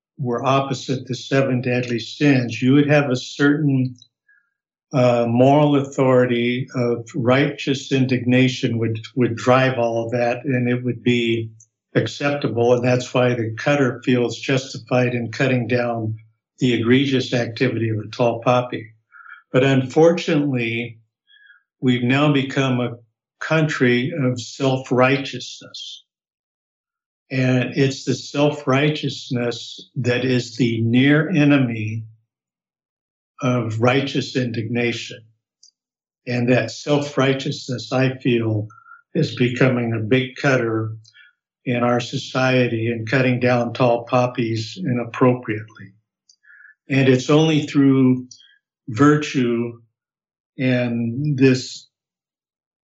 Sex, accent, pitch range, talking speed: male, American, 120-135 Hz, 105 wpm